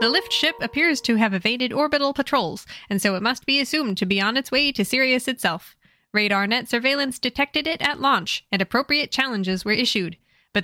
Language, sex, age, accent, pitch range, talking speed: English, female, 10-29, American, 205-285 Hz, 205 wpm